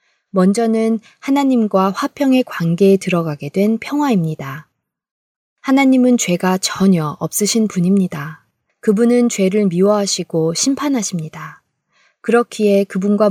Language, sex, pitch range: Korean, female, 170-225 Hz